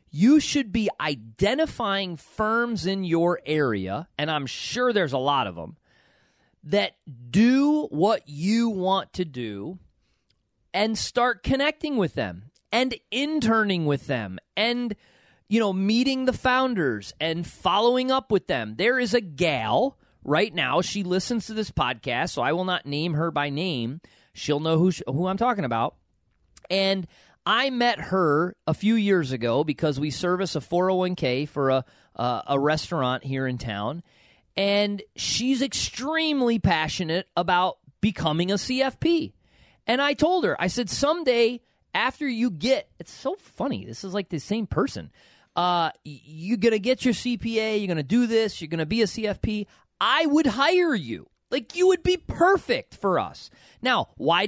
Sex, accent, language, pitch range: male, American, English, 160-255 Hz